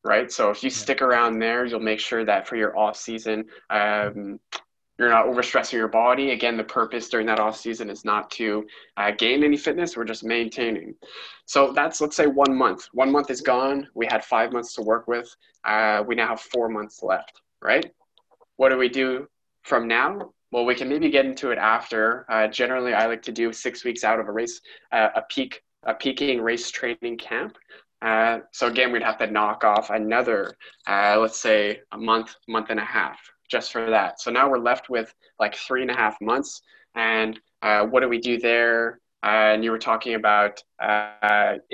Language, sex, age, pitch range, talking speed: English, male, 20-39, 110-125 Hz, 205 wpm